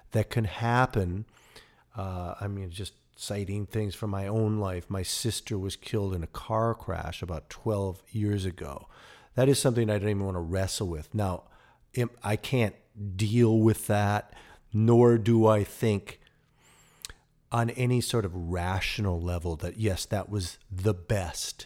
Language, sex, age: English, male, 40-59